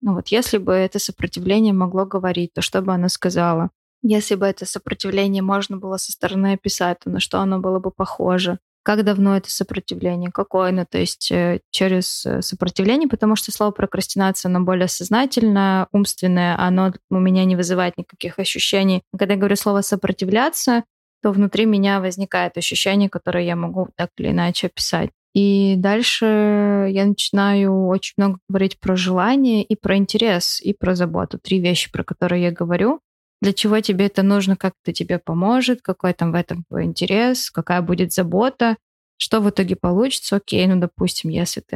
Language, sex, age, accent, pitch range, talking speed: Russian, female, 20-39, native, 180-210 Hz, 170 wpm